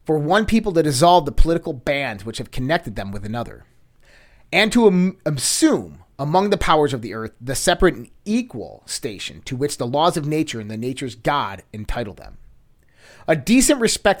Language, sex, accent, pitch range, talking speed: English, male, American, 125-180 Hz, 180 wpm